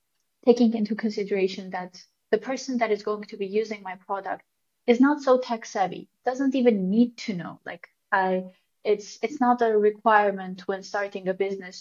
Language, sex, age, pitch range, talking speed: English, female, 20-39, 185-225 Hz, 180 wpm